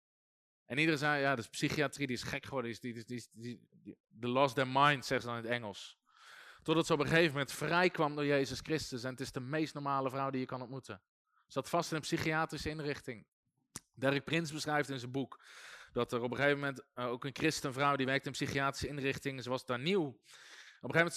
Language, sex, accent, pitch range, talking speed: Dutch, male, Dutch, 135-165 Hz, 225 wpm